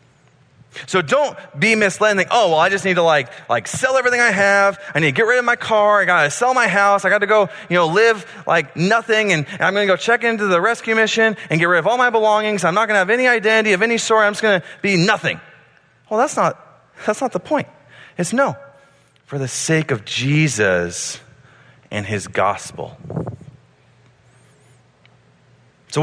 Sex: male